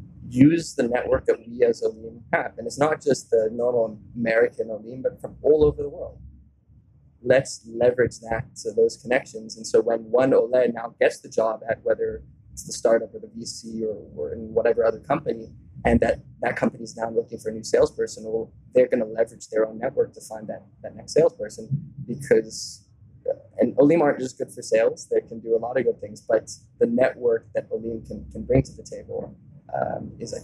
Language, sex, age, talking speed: English, male, 20-39, 210 wpm